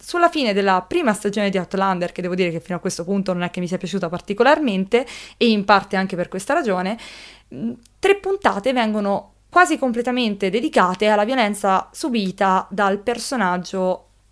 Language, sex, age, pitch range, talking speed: Italian, female, 20-39, 190-255 Hz, 170 wpm